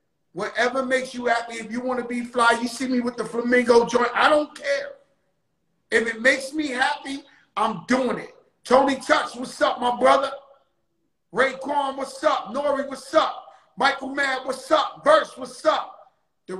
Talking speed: 175 wpm